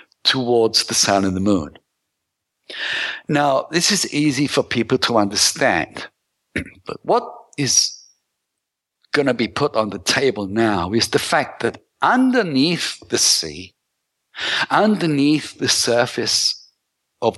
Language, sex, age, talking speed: English, male, 60-79, 125 wpm